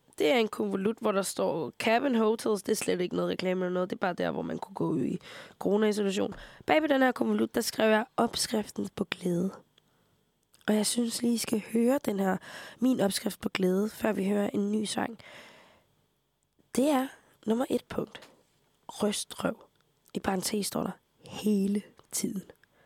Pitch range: 210-255 Hz